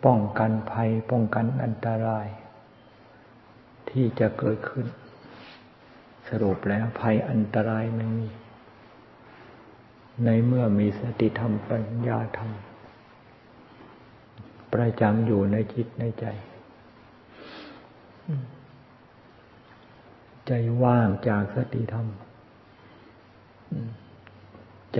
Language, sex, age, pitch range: Thai, male, 60-79, 105-120 Hz